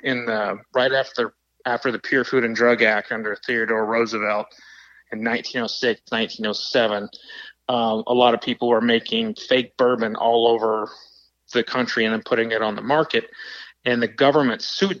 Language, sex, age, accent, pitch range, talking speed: English, male, 30-49, American, 110-135 Hz, 165 wpm